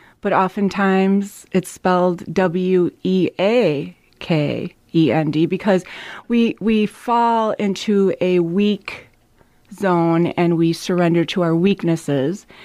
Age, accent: 30-49, American